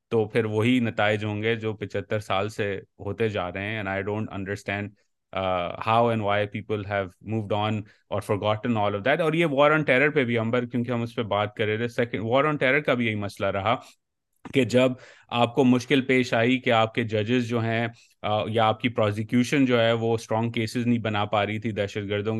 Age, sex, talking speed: 30-49, male, 180 wpm